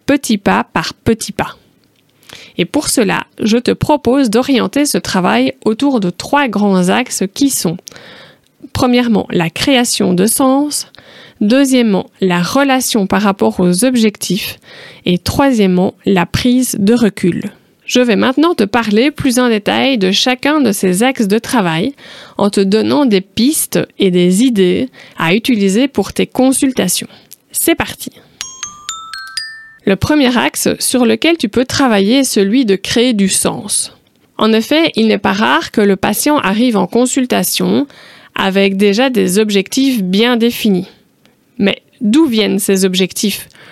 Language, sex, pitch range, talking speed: French, female, 200-265 Hz, 145 wpm